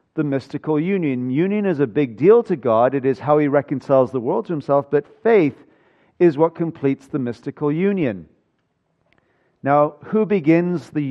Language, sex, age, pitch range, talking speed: English, male, 40-59, 120-160 Hz, 160 wpm